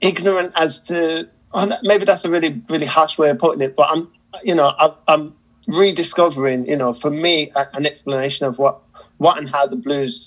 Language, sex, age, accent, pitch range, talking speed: English, male, 20-39, British, 135-165 Hz, 205 wpm